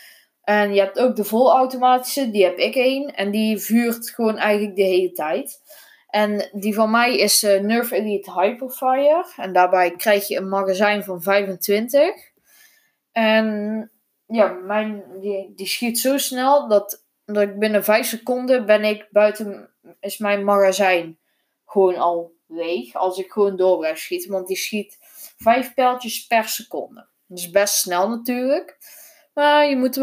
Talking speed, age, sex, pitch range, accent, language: 160 wpm, 20-39, female, 190-250 Hz, Dutch, Dutch